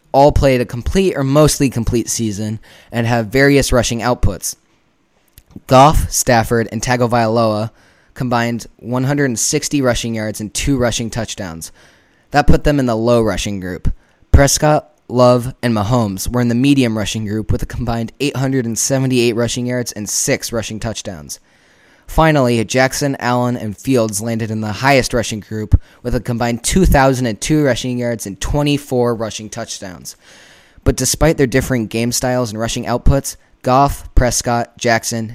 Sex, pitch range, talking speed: male, 110-130 Hz, 145 wpm